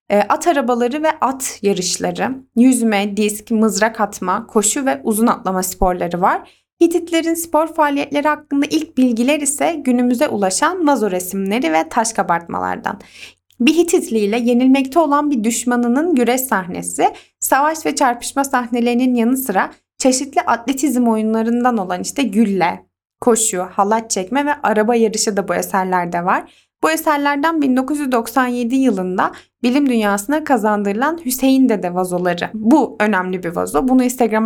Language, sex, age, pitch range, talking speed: Turkish, female, 20-39, 210-290 Hz, 130 wpm